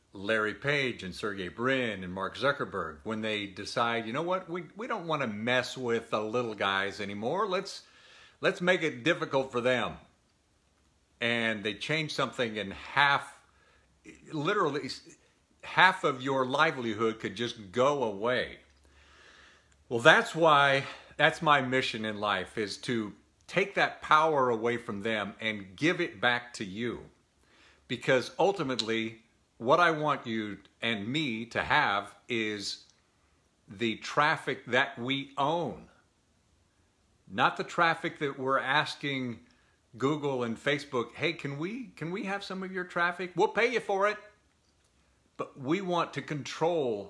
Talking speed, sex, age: 145 wpm, male, 50-69